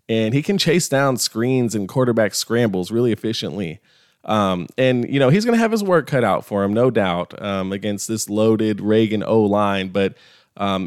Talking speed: 195 wpm